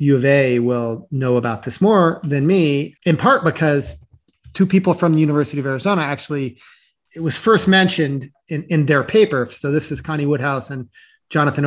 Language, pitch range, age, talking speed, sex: English, 135-175 Hz, 30-49, 185 wpm, male